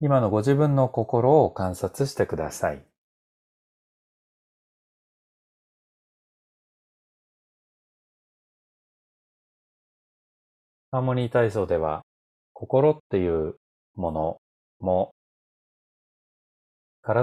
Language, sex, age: Japanese, male, 30-49